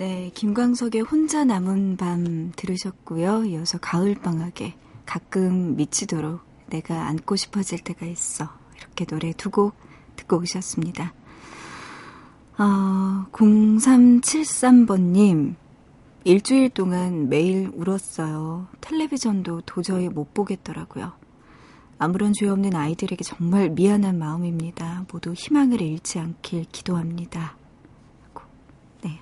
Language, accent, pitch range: Korean, native, 170-205 Hz